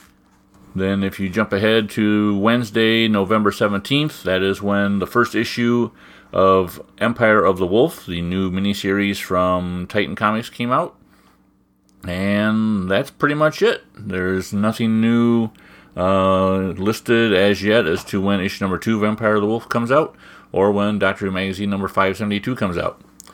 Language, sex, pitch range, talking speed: English, male, 95-115 Hz, 160 wpm